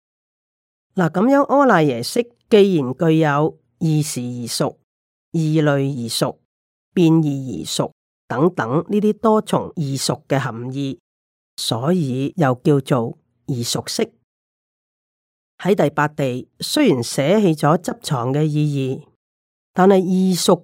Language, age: Chinese, 40-59